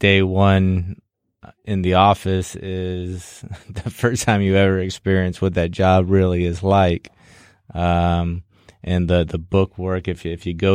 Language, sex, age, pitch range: English, male, 20-39, 90-95 Hz